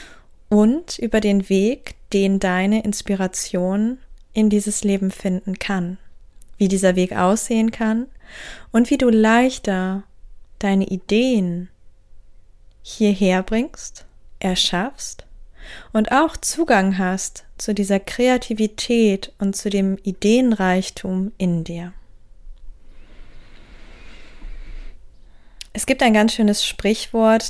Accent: German